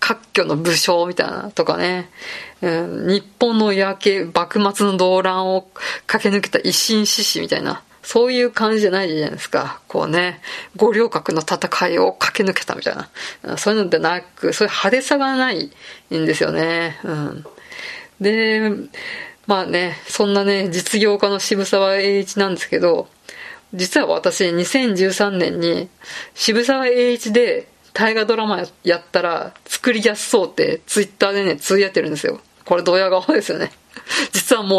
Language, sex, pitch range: Japanese, female, 180-225 Hz